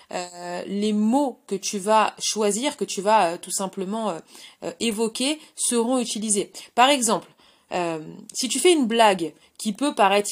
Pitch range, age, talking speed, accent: 180-235 Hz, 30-49, 170 wpm, French